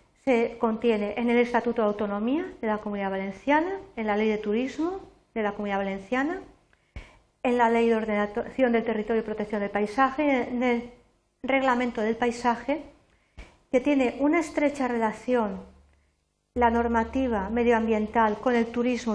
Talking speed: 145 wpm